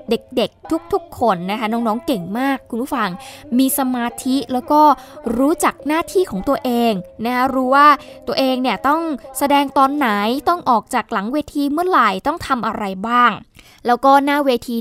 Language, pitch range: Thai, 220-280 Hz